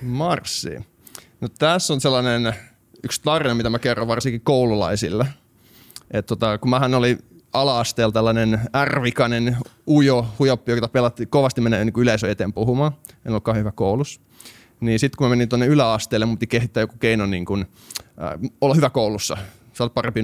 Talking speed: 155 wpm